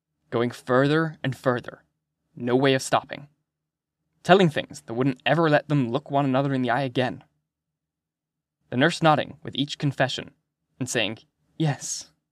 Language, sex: English, male